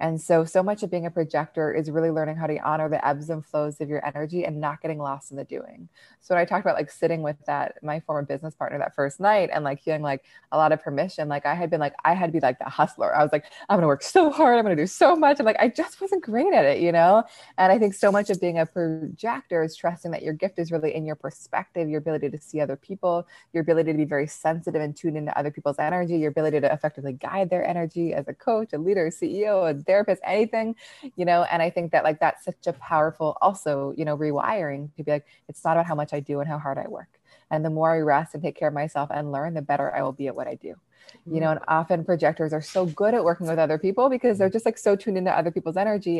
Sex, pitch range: female, 150-185 Hz